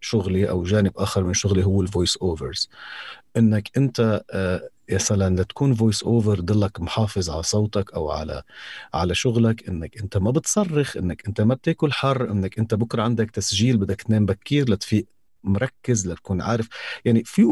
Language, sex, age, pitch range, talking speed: Arabic, male, 40-59, 100-145 Hz, 160 wpm